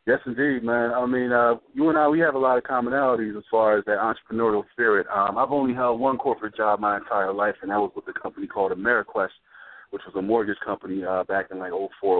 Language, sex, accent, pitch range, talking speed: English, male, American, 100-130 Hz, 235 wpm